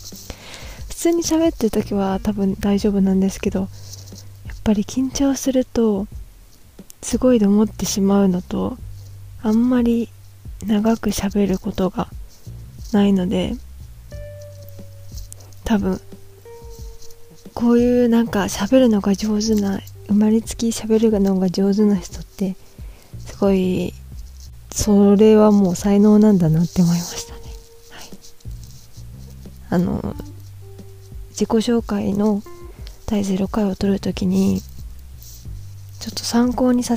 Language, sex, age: Japanese, female, 20-39